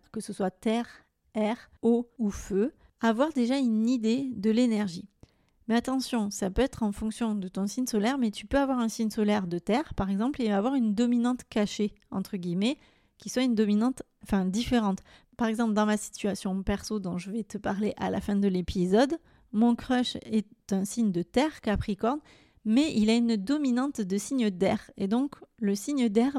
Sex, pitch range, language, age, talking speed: female, 205-245 Hz, French, 30-49, 195 wpm